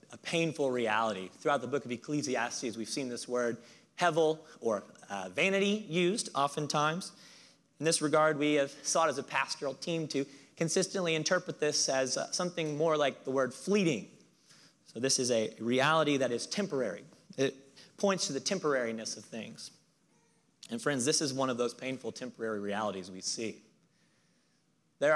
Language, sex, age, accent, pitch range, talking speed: English, male, 30-49, American, 130-170 Hz, 160 wpm